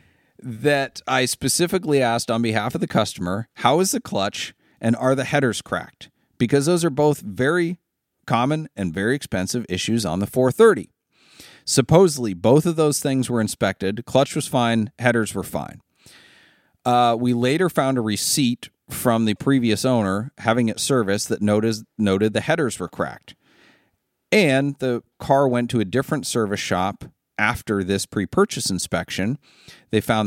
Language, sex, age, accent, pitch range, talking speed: English, male, 40-59, American, 110-145 Hz, 155 wpm